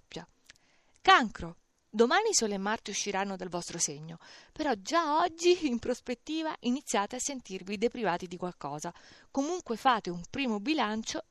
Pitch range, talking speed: 180-260 Hz, 135 wpm